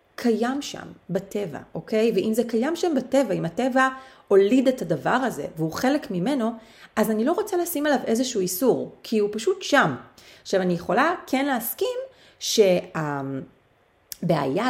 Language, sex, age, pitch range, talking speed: Hebrew, female, 30-49, 175-250 Hz, 145 wpm